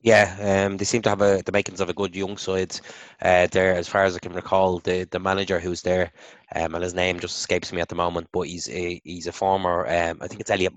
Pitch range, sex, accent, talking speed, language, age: 90-100 Hz, male, Irish, 270 wpm, English, 20-39